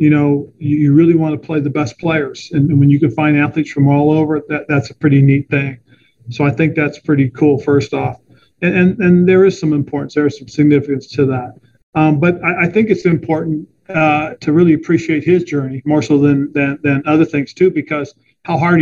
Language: English